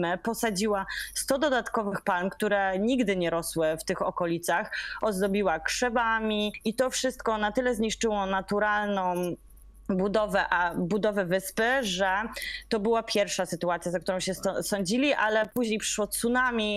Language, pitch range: Polish, 175-210 Hz